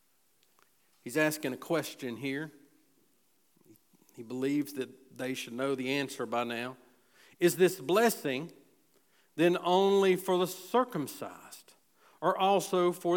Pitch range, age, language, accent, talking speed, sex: 145-205 Hz, 50-69, English, American, 120 wpm, male